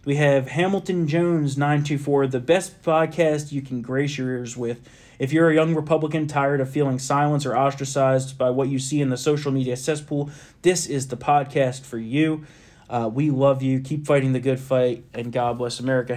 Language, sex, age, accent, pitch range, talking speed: English, male, 30-49, American, 130-150 Hz, 195 wpm